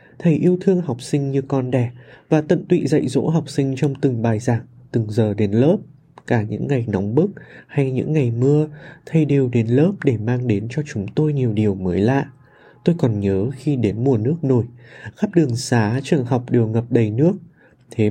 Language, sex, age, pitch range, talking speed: Vietnamese, male, 20-39, 120-150 Hz, 210 wpm